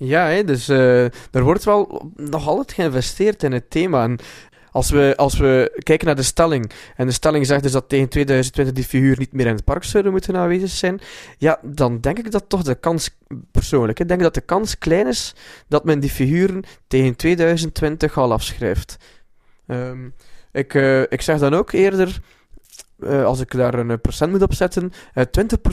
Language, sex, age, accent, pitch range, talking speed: Dutch, male, 20-39, Dutch, 120-165 Hz, 195 wpm